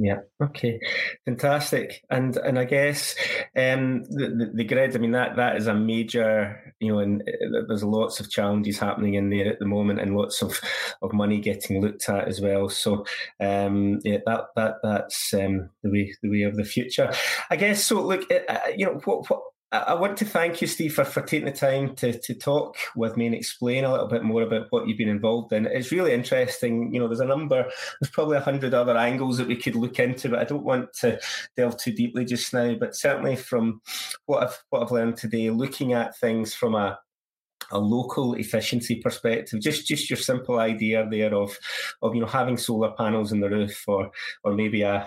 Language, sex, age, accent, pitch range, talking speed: English, male, 20-39, British, 105-125 Hz, 215 wpm